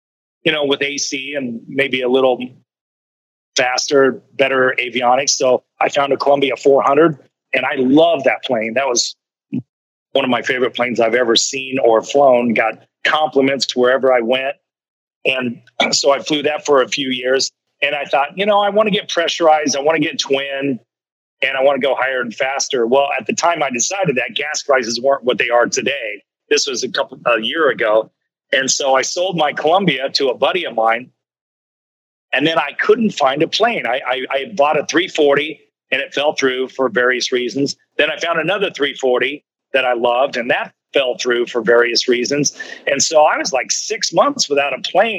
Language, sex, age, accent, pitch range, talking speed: English, male, 40-59, American, 125-155 Hz, 200 wpm